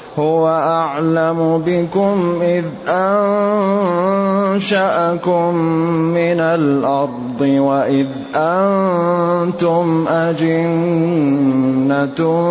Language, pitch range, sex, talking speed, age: Arabic, 165-175 Hz, male, 50 wpm, 30-49